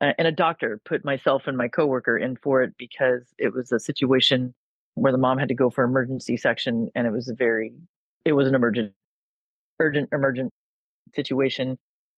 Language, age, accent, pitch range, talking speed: English, 30-49, American, 125-160 Hz, 180 wpm